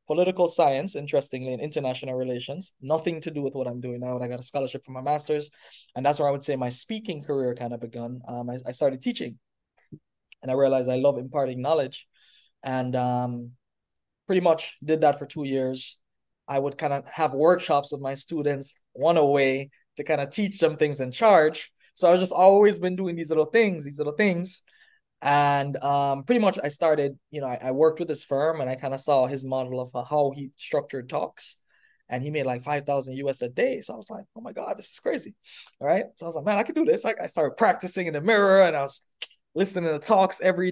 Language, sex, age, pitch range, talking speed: English, male, 20-39, 130-160 Hz, 230 wpm